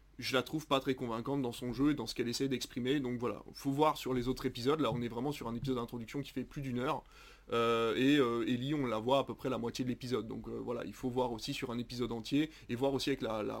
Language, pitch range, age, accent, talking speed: French, 125-145 Hz, 20-39, French, 300 wpm